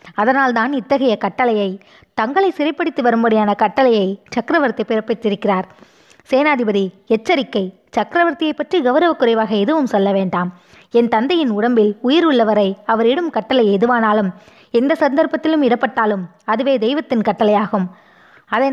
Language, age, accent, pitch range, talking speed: Tamil, 20-39, native, 205-270 Hz, 110 wpm